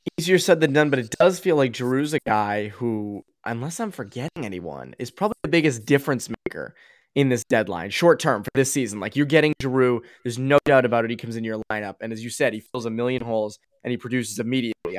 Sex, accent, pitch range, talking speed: male, American, 110-145 Hz, 230 wpm